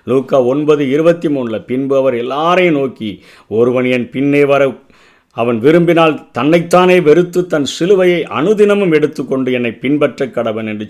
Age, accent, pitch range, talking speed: 50-69, native, 115-150 Hz, 115 wpm